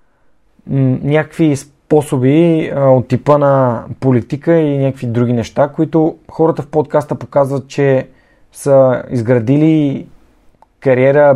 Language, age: Bulgarian, 20-39